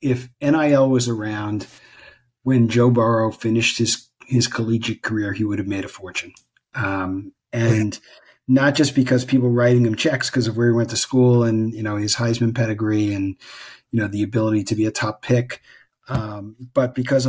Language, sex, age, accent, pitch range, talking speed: English, male, 40-59, American, 110-125 Hz, 185 wpm